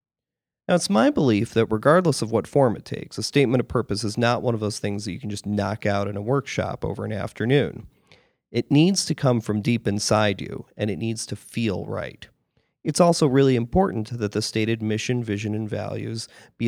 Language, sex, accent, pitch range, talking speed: English, male, American, 105-125 Hz, 210 wpm